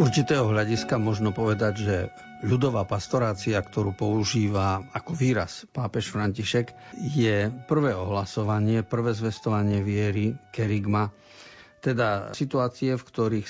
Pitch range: 105-130 Hz